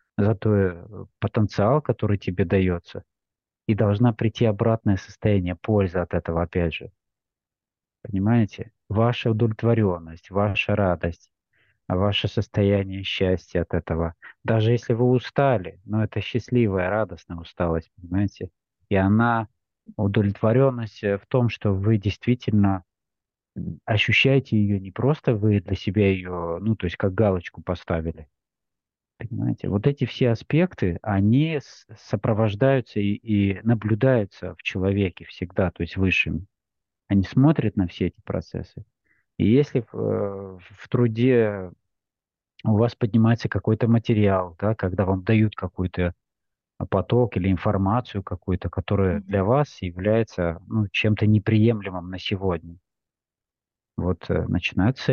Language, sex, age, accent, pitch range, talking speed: Russian, male, 20-39, native, 95-115 Hz, 120 wpm